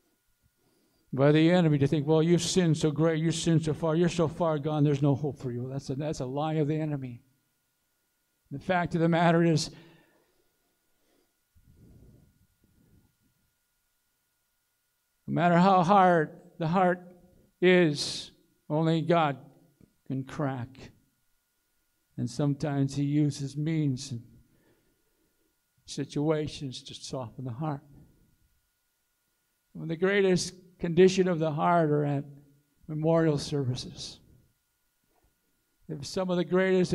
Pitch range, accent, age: 145-175 Hz, American, 60-79